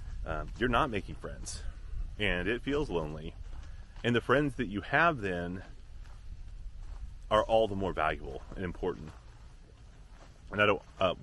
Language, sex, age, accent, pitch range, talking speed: English, male, 30-49, American, 85-110 Hz, 145 wpm